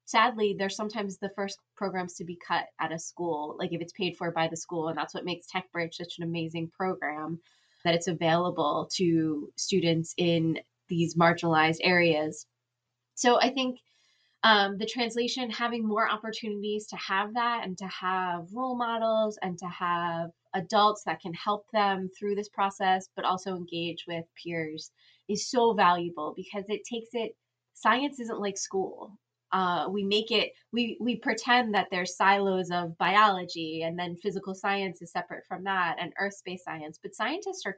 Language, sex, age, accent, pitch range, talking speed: English, female, 20-39, American, 170-205 Hz, 175 wpm